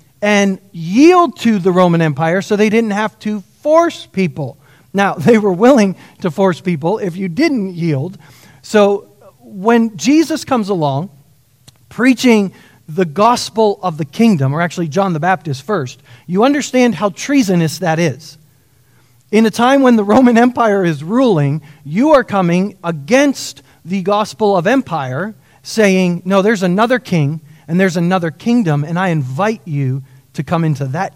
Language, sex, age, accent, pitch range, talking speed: English, male, 40-59, American, 155-215 Hz, 155 wpm